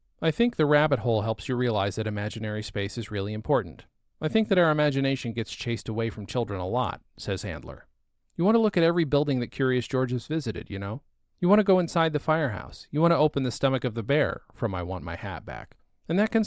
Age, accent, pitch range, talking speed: 40-59, American, 105-145 Hz, 245 wpm